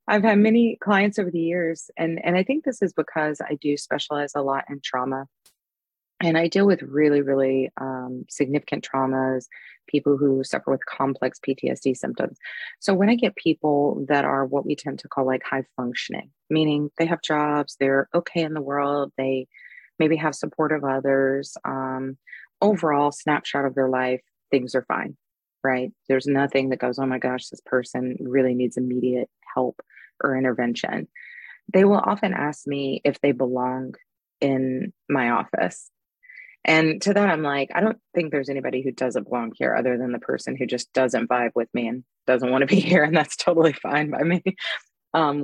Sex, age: female, 30-49